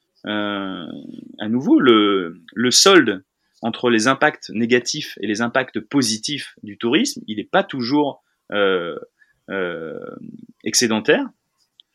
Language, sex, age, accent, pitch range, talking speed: French, male, 30-49, French, 110-165 Hz, 115 wpm